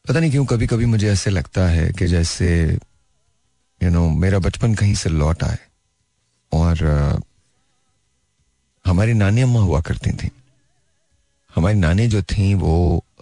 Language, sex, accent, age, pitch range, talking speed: Hindi, male, native, 40-59, 85-110 Hz, 155 wpm